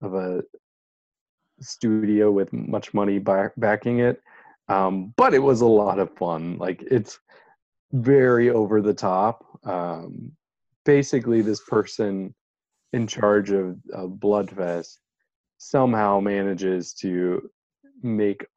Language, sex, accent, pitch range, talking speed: English, male, American, 95-115 Hz, 115 wpm